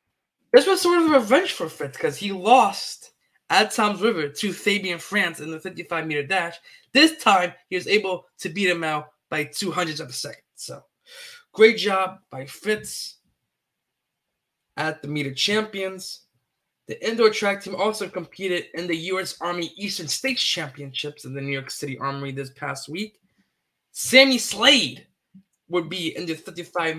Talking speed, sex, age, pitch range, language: 160 wpm, male, 20-39, 155-200 Hz, English